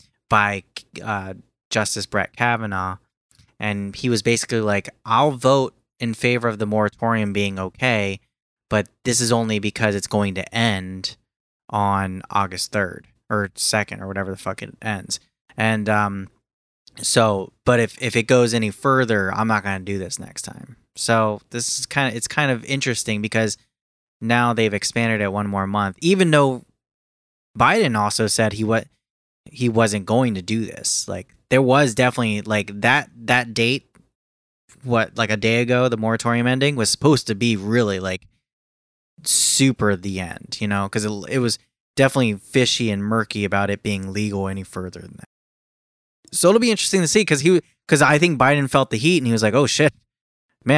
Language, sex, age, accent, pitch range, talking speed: English, male, 20-39, American, 100-125 Hz, 180 wpm